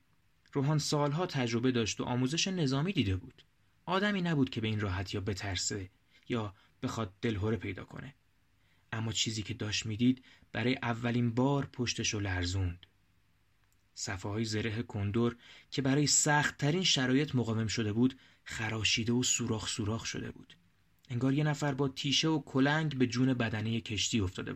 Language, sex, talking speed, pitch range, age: Persian, male, 150 wpm, 105-140 Hz, 30-49